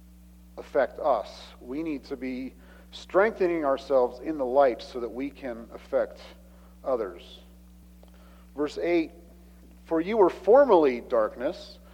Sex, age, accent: male, 40-59, American